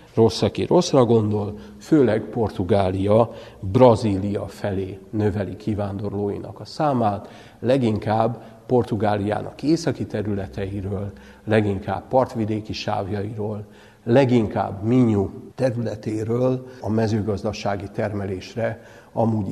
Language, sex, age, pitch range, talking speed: Hungarian, male, 60-79, 105-120 Hz, 80 wpm